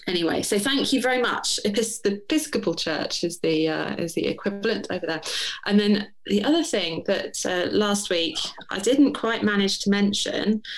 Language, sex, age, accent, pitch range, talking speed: English, female, 30-49, British, 175-225 Hz, 180 wpm